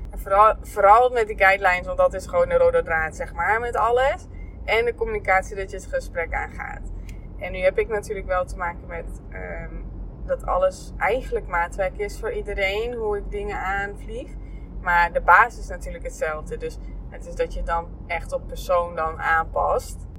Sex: female